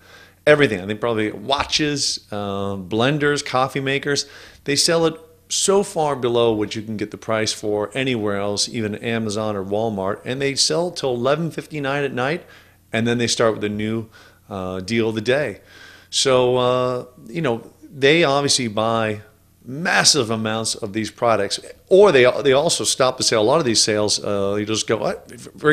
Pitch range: 105-140 Hz